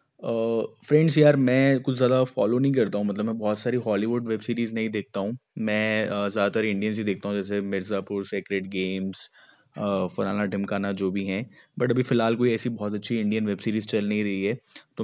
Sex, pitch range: male, 100-115 Hz